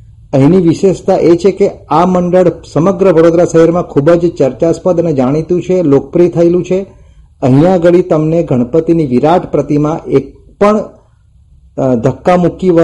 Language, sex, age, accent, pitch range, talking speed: Gujarati, male, 40-59, native, 140-170 Hz, 135 wpm